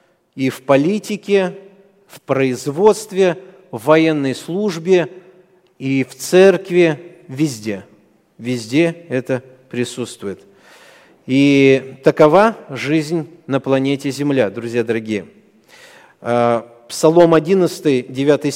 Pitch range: 120-170 Hz